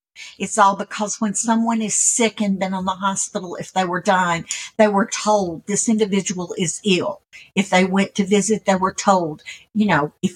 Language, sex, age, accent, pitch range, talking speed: English, female, 60-79, American, 180-220 Hz, 195 wpm